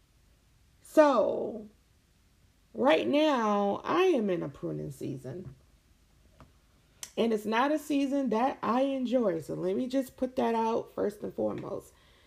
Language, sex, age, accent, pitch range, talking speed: English, female, 30-49, American, 185-260 Hz, 130 wpm